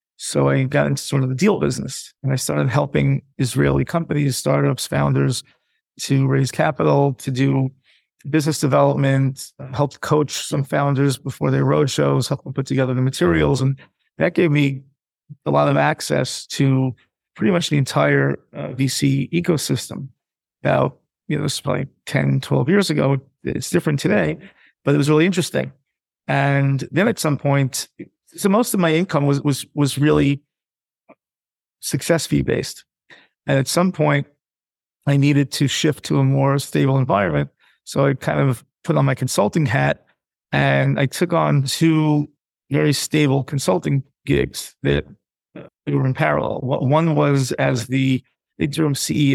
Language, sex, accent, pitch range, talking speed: English, male, American, 130-150 Hz, 155 wpm